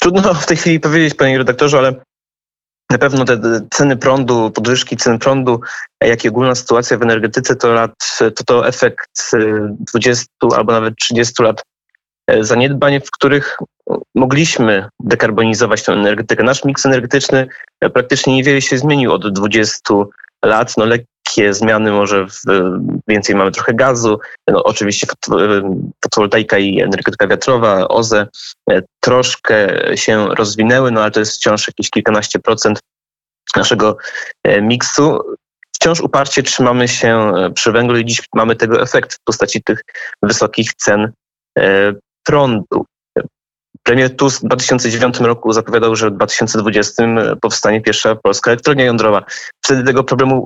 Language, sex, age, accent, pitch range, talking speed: Polish, male, 20-39, native, 110-130 Hz, 135 wpm